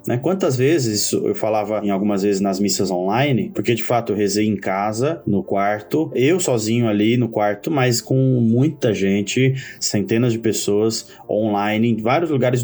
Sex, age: male, 20-39